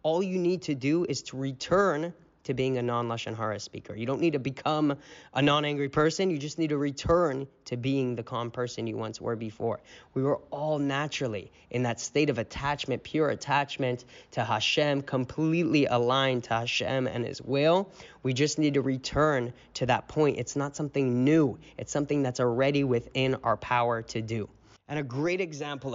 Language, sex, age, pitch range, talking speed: English, male, 10-29, 125-150 Hz, 185 wpm